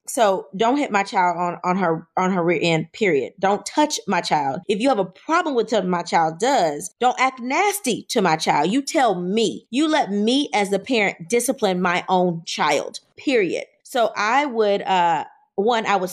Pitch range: 195-255 Hz